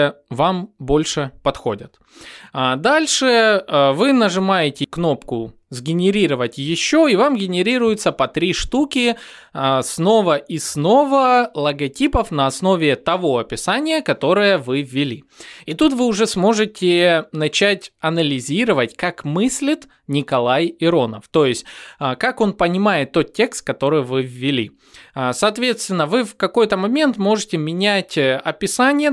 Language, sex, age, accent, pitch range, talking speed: Russian, male, 20-39, native, 140-210 Hz, 115 wpm